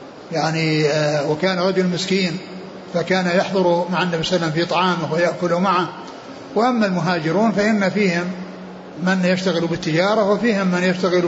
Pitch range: 165-190 Hz